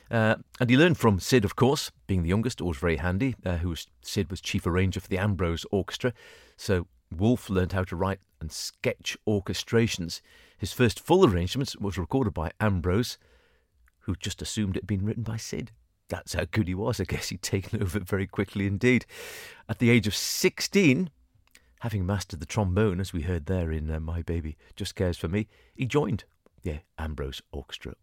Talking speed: 195 wpm